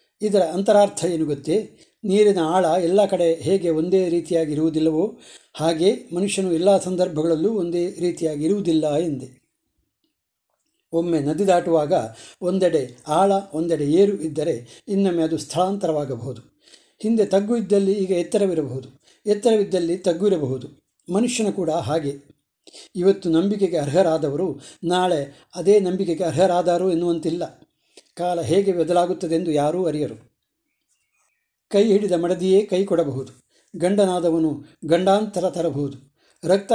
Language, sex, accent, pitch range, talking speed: Kannada, male, native, 160-195 Hz, 100 wpm